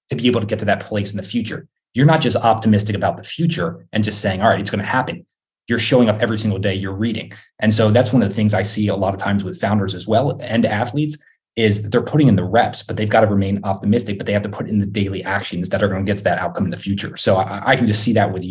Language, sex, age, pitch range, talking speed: English, male, 20-39, 95-115 Hz, 305 wpm